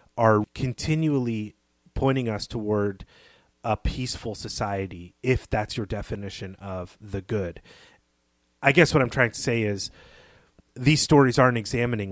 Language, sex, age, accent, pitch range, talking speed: English, male, 30-49, American, 100-120 Hz, 135 wpm